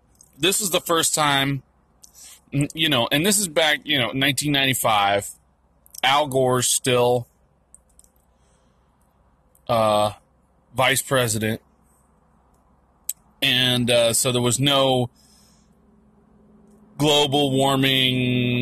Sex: male